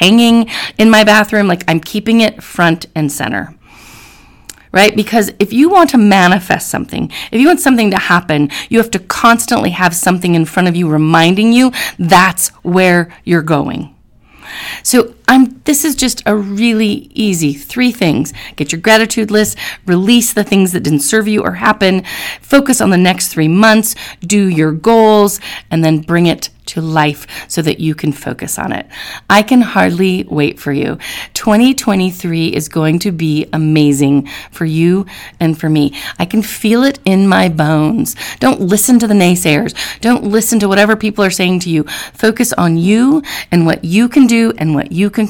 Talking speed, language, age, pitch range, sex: 180 wpm, English, 40-59, 160-220 Hz, female